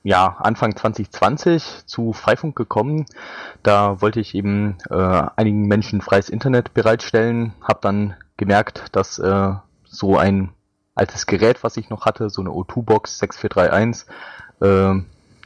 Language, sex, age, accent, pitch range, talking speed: German, male, 20-39, German, 95-110 Hz, 130 wpm